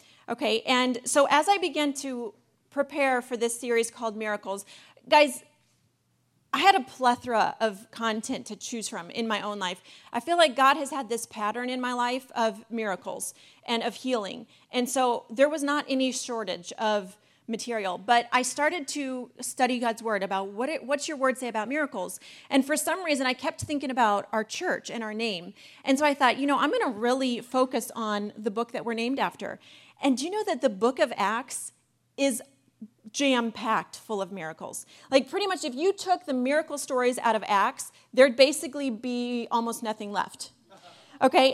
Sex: female